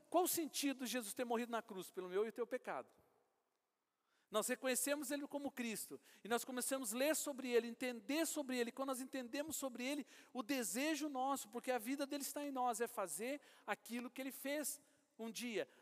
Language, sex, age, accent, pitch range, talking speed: Portuguese, male, 50-69, Brazilian, 230-285 Hz, 200 wpm